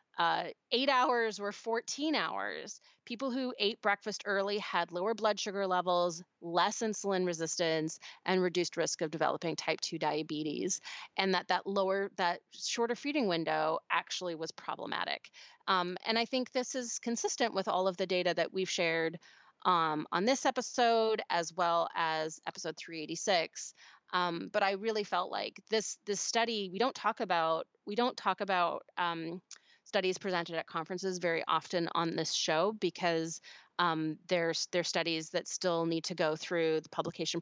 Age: 30-49